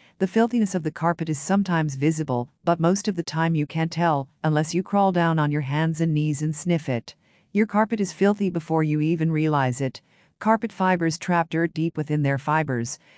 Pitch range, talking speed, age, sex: 150-185 Hz, 205 wpm, 50-69, female